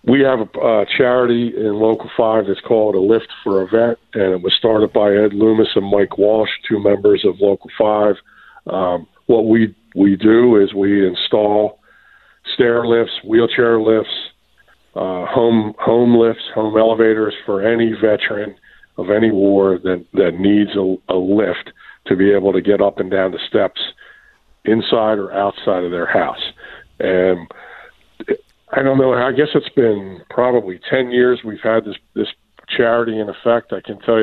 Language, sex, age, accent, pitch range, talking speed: English, male, 50-69, American, 100-115 Hz, 170 wpm